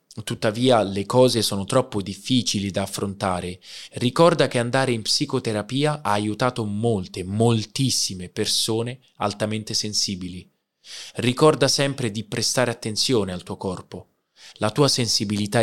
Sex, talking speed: male, 120 wpm